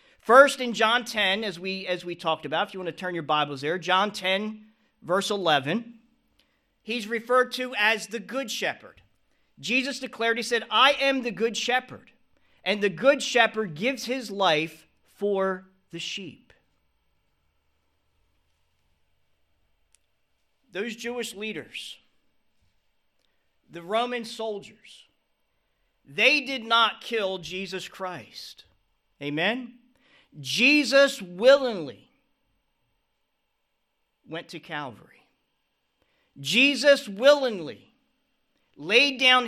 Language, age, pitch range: English, 40-59, 165-245 Hz